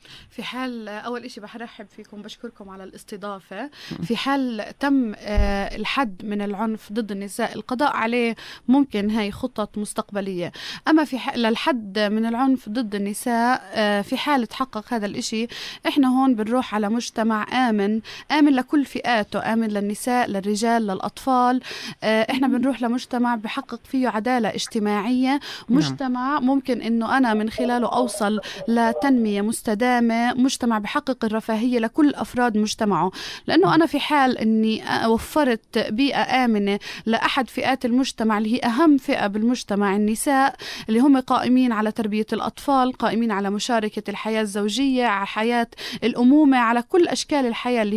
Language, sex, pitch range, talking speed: Arabic, female, 215-260 Hz, 140 wpm